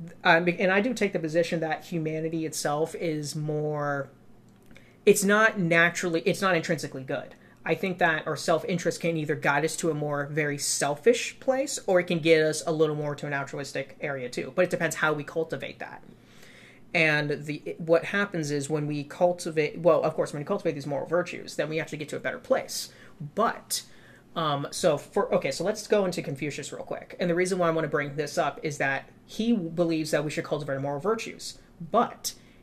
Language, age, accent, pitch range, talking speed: English, 30-49, American, 150-185 Hz, 205 wpm